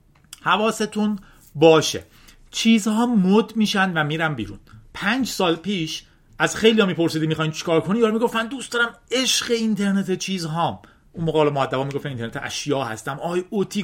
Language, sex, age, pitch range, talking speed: Persian, male, 40-59, 150-200 Hz, 145 wpm